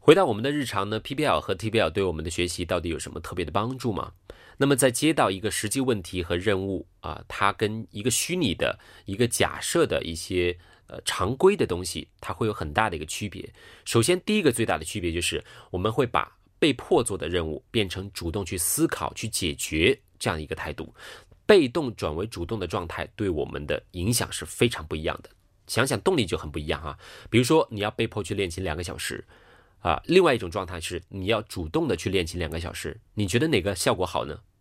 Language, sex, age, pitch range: Chinese, male, 30-49, 85-115 Hz